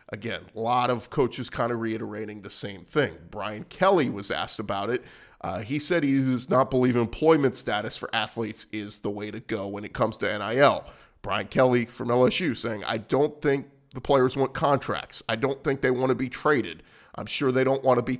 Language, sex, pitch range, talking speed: English, male, 110-135 Hz, 215 wpm